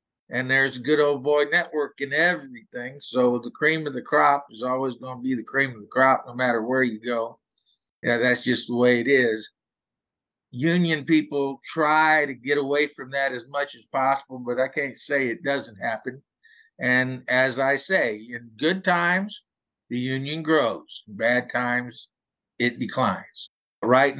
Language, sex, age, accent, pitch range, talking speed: English, male, 50-69, American, 115-145 Hz, 180 wpm